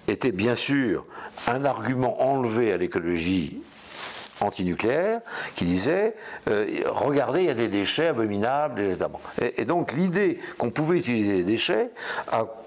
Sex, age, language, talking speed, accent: male, 60-79, French, 135 wpm, French